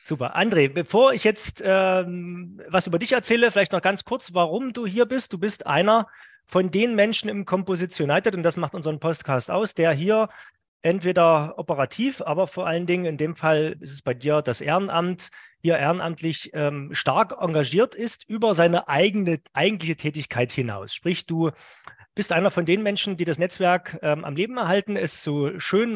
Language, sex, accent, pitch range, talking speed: German, male, German, 155-205 Hz, 185 wpm